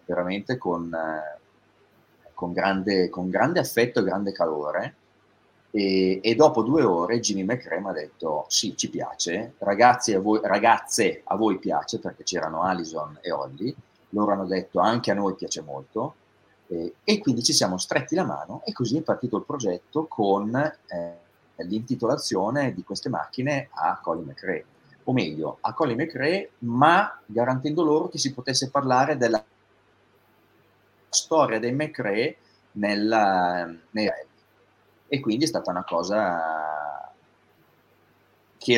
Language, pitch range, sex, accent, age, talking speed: Italian, 95-125 Hz, male, native, 30-49, 145 wpm